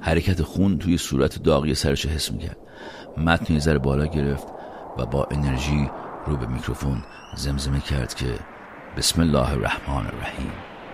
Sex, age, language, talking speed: male, 50-69, Persian, 145 wpm